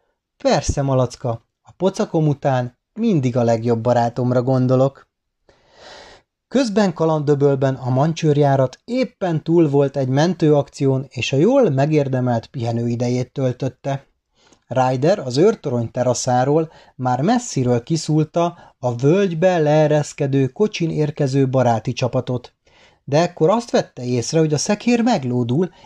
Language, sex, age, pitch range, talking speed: Hungarian, male, 30-49, 130-180 Hz, 110 wpm